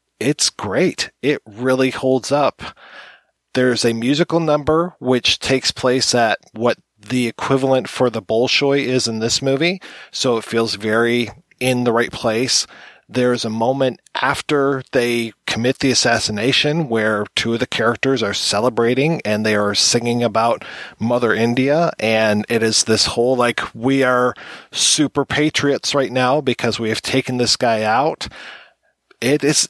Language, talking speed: English, 150 wpm